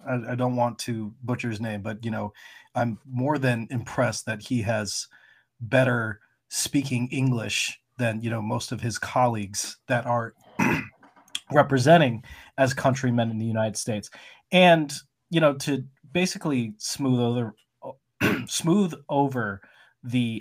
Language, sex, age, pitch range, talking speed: English, male, 20-39, 115-135 Hz, 135 wpm